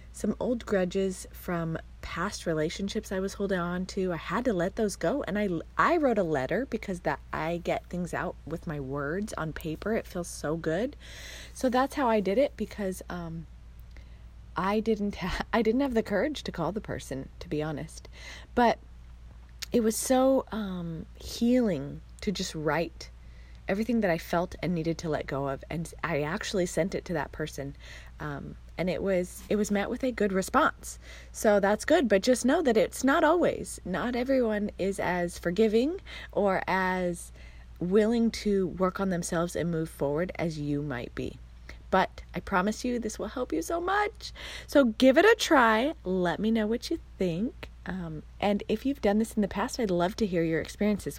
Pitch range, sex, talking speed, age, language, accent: 160-220 Hz, female, 190 wpm, 30-49, English, American